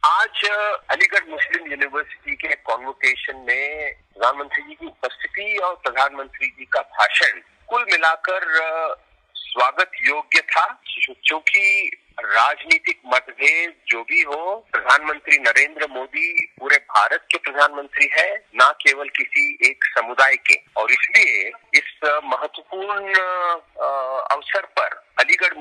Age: 50-69